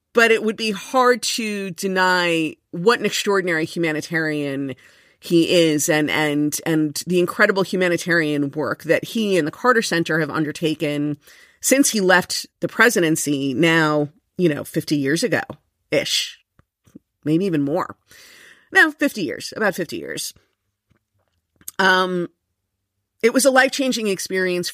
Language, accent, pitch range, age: English, American, 155-185 Hz, 40-59